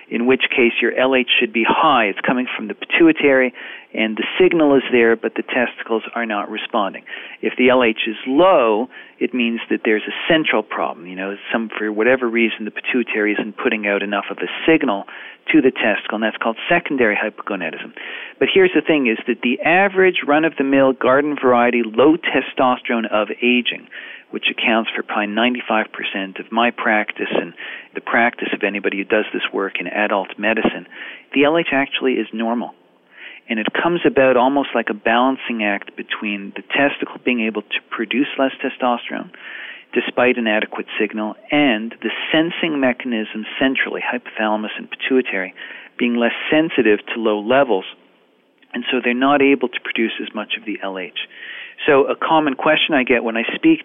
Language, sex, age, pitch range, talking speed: English, male, 40-59, 110-140 Hz, 175 wpm